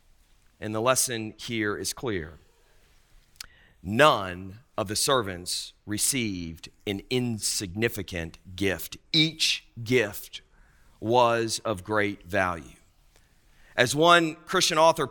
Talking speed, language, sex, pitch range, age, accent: 95 wpm, English, male, 95-125 Hz, 40-59, American